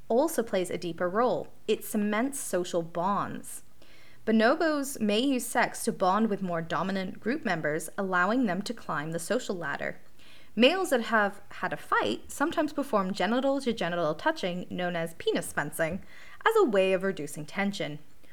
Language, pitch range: English, 180-260 Hz